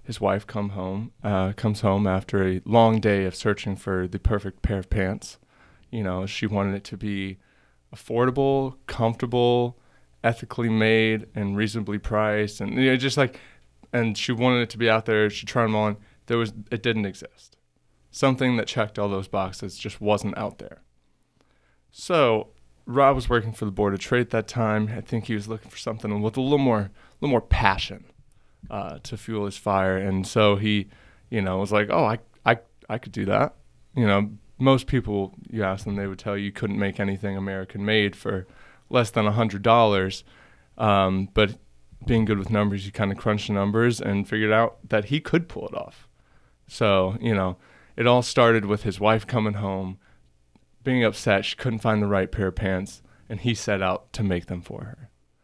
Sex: male